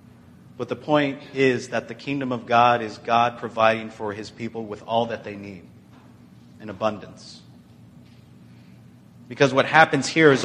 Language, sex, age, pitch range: English, male, 30-49, 110-145 Hz